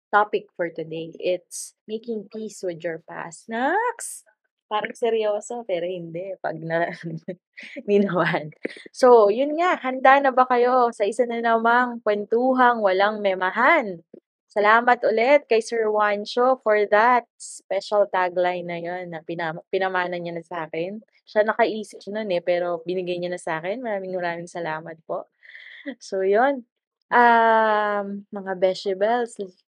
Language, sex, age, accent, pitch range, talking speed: Filipino, female, 20-39, native, 170-215 Hz, 130 wpm